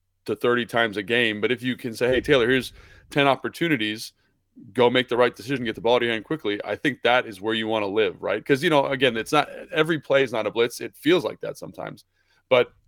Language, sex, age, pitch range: English, male, 30-49, 105-135 Hz